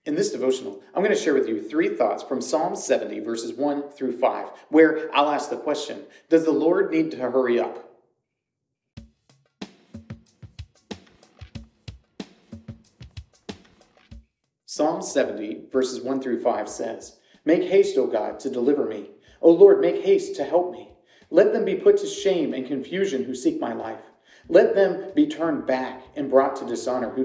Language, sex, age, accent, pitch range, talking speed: English, male, 40-59, American, 130-180 Hz, 160 wpm